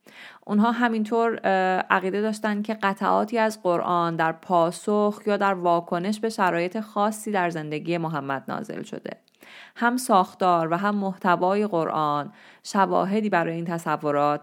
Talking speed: 130 wpm